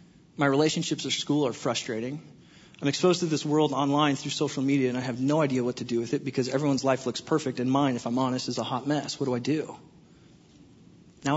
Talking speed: 230 wpm